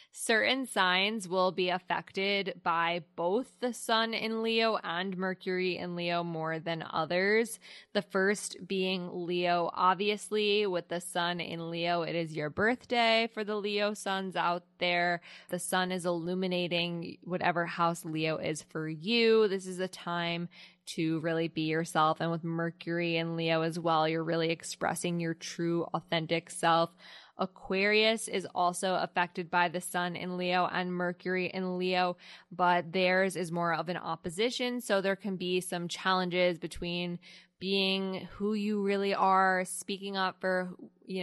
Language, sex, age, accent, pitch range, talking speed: English, female, 10-29, American, 170-190 Hz, 155 wpm